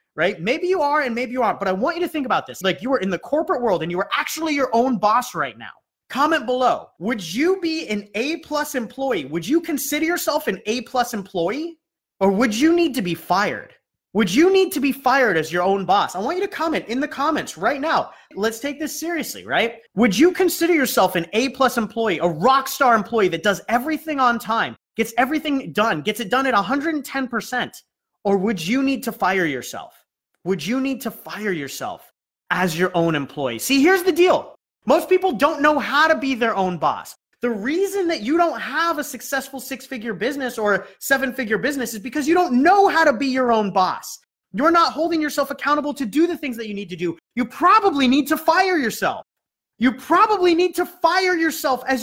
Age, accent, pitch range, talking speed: 30-49, American, 225-315 Hz, 220 wpm